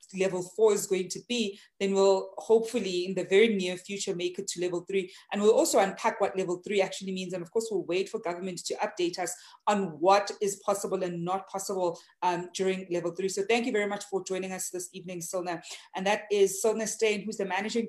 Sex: female